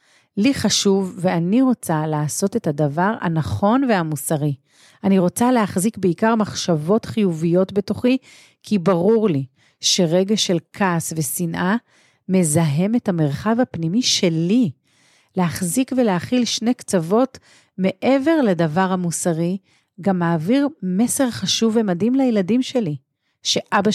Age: 40-59